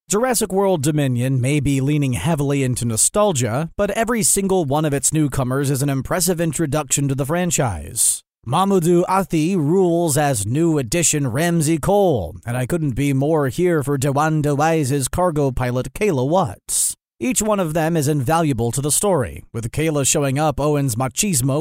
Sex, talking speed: male, 165 wpm